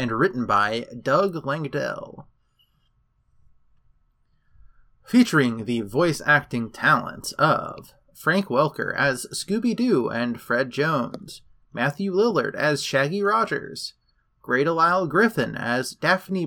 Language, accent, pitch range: English, American, 120-185 Hz